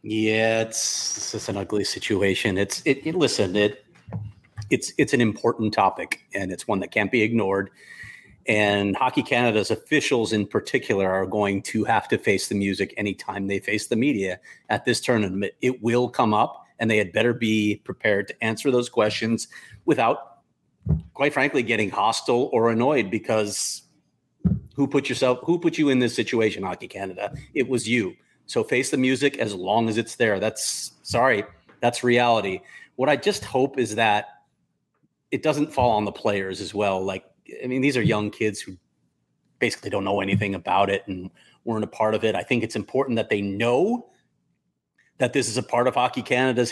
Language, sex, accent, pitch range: English, male, American, 100-125 Hz